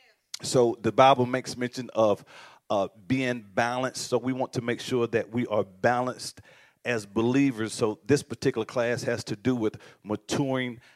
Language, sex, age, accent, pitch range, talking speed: English, male, 40-59, American, 115-135 Hz, 165 wpm